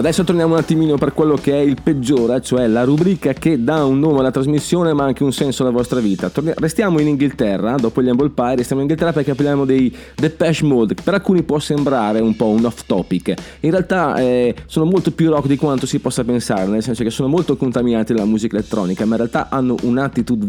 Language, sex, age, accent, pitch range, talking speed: Italian, male, 30-49, native, 115-145 Hz, 225 wpm